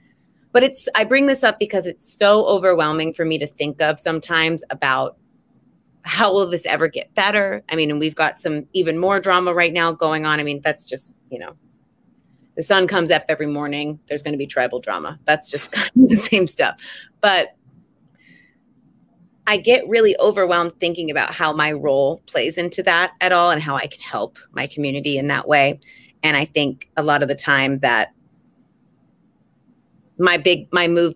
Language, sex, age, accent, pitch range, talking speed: English, female, 30-49, American, 145-180 Hz, 190 wpm